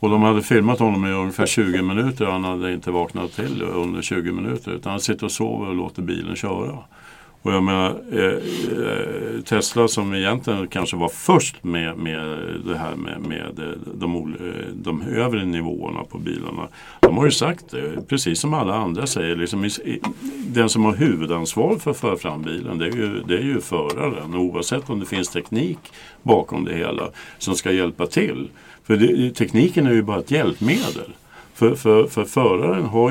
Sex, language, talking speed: male, Swedish, 175 wpm